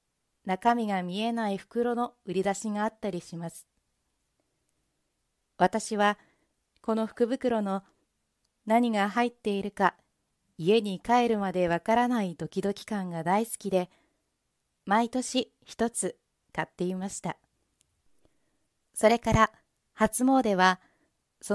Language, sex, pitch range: Japanese, female, 190-230 Hz